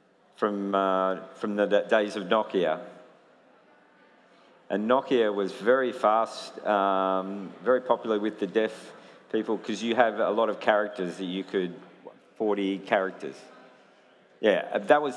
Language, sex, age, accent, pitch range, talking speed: English, male, 50-69, Australian, 100-125 Hz, 140 wpm